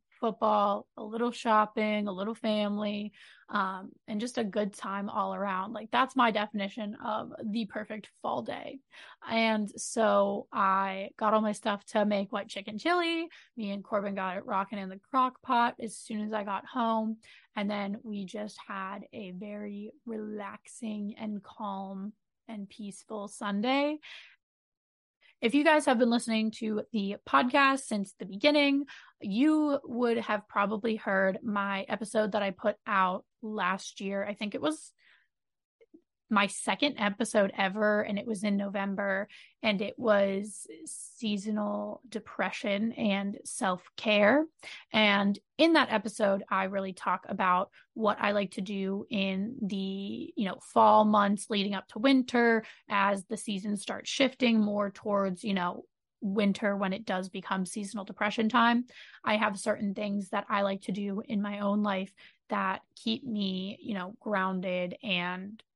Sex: female